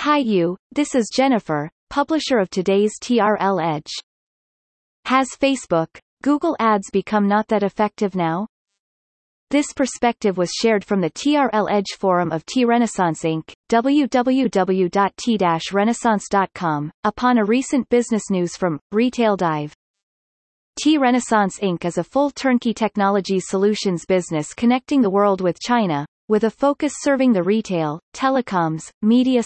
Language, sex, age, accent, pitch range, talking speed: English, female, 30-49, American, 185-240 Hz, 125 wpm